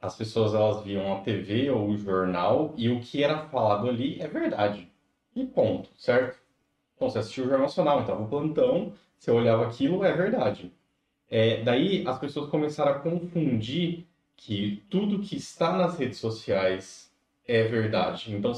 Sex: male